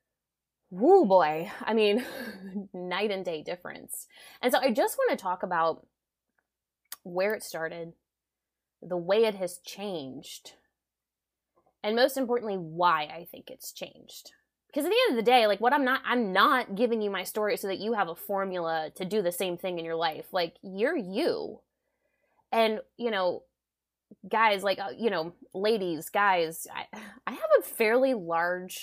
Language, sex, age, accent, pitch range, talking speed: English, female, 20-39, American, 175-230 Hz, 170 wpm